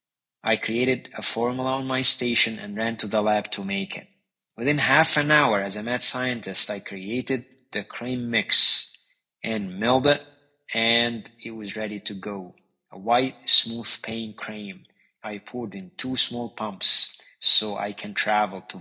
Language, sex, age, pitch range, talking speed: English, male, 20-39, 105-125 Hz, 170 wpm